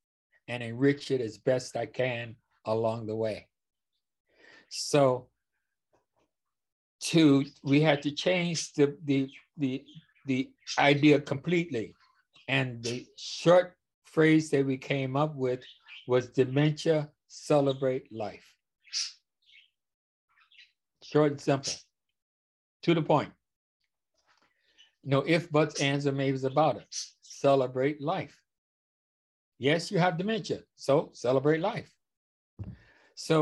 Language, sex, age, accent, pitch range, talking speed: English, male, 60-79, American, 130-150 Hz, 105 wpm